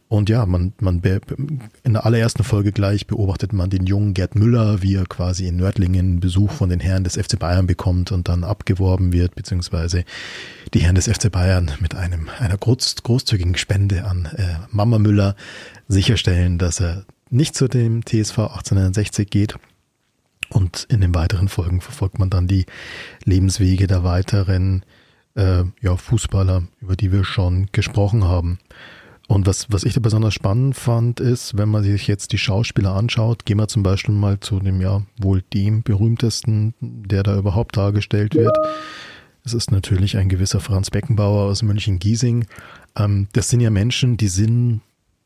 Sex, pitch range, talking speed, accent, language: male, 95-110 Hz, 165 wpm, German, German